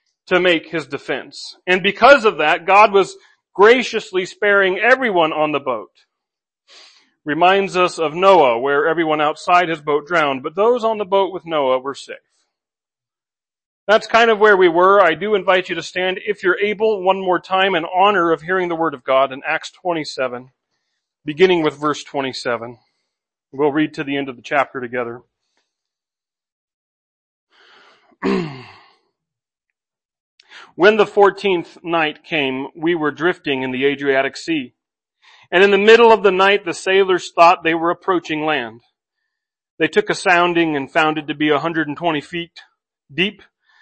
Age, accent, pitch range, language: 40-59, American, 150-195 Hz, English